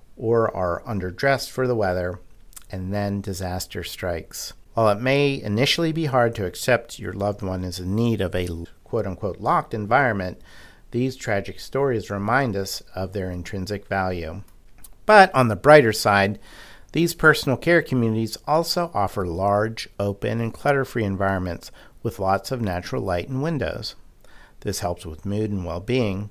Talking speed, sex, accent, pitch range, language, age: 155 wpm, male, American, 95-130 Hz, English, 50-69